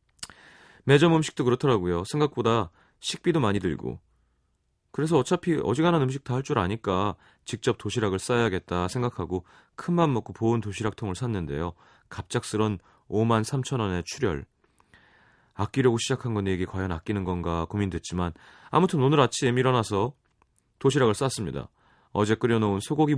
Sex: male